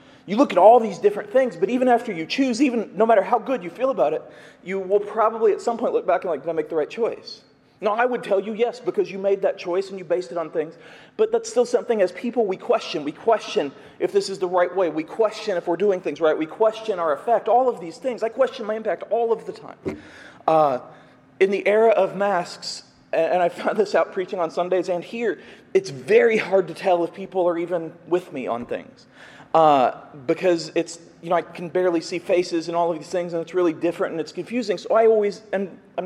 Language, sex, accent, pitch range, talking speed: English, male, American, 175-240 Hz, 250 wpm